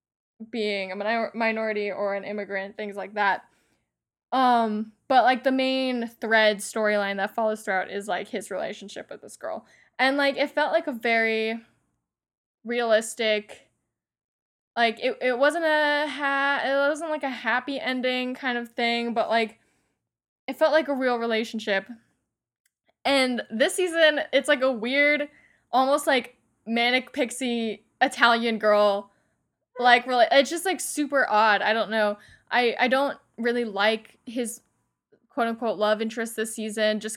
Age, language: 10-29, English